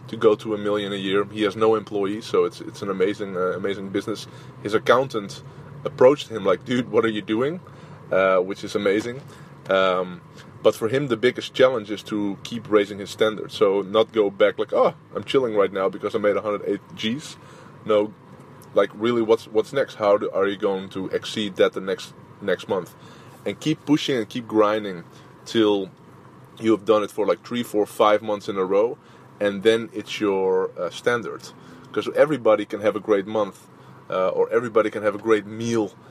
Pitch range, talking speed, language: 100-125 Hz, 200 wpm, English